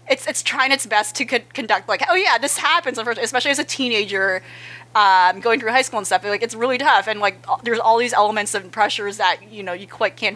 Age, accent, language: 30-49, American, English